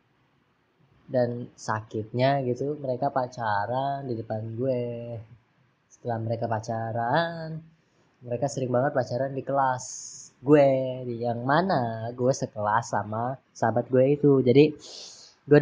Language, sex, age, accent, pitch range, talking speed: Indonesian, female, 20-39, native, 120-145 Hz, 110 wpm